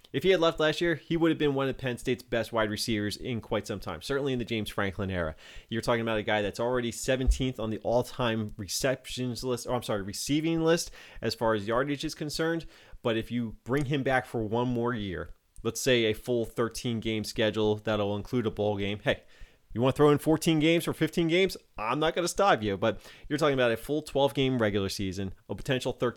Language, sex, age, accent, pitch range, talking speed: English, male, 30-49, American, 105-135 Hz, 230 wpm